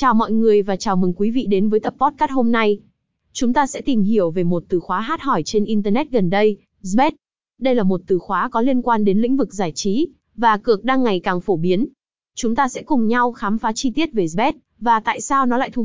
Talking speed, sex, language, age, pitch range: 255 wpm, female, Vietnamese, 20-39, 195-250 Hz